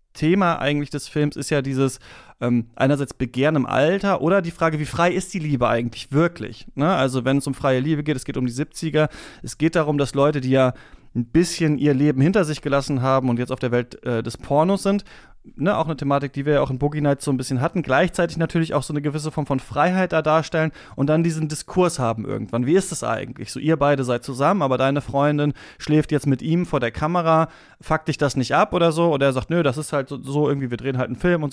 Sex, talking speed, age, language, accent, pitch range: male, 250 wpm, 30-49, German, German, 130-155 Hz